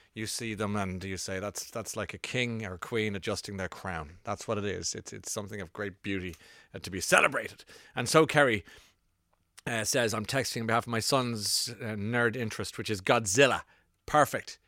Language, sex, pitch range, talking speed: English, male, 115-160 Hz, 205 wpm